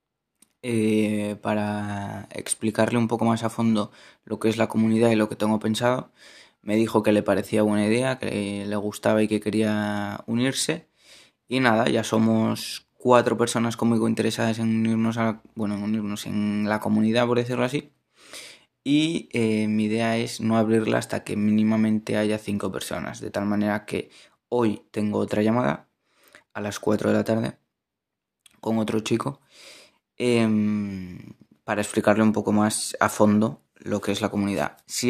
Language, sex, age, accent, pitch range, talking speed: Spanish, male, 20-39, Spanish, 105-115 Hz, 165 wpm